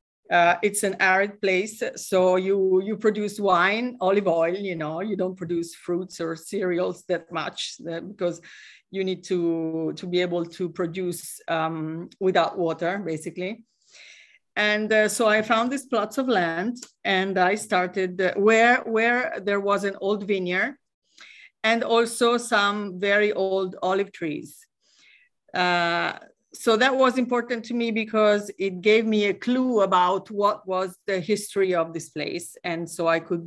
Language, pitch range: English, 175-220 Hz